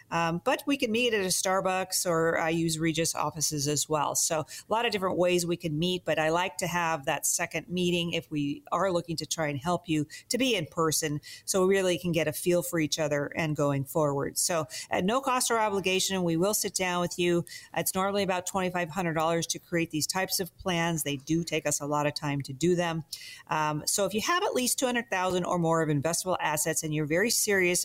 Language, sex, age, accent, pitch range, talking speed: English, female, 40-59, American, 160-190 Hz, 235 wpm